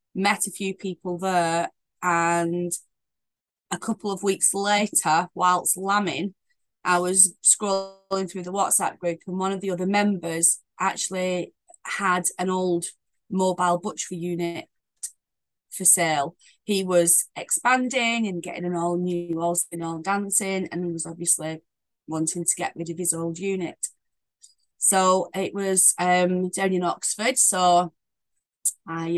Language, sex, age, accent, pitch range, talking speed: English, female, 20-39, British, 170-195 Hz, 140 wpm